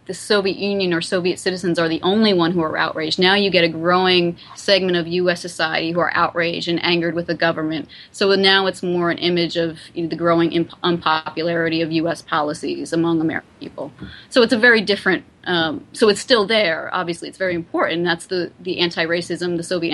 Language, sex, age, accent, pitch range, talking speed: English, female, 30-49, American, 170-205 Hz, 200 wpm